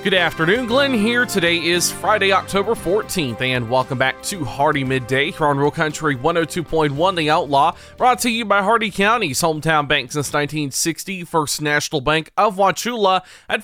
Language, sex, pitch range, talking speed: English, male, 140-200 Hz, 165 wpm